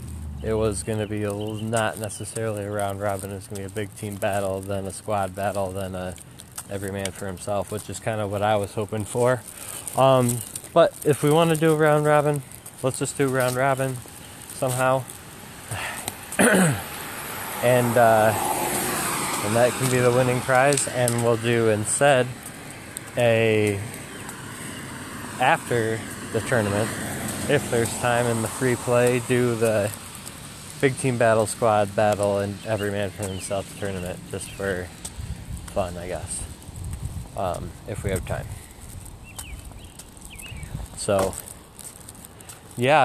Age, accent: 20-39, American